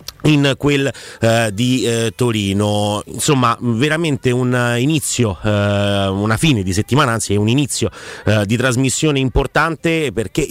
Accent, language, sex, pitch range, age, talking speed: native, Italian, male, 110-135 Hz, 30-49, 135 wpm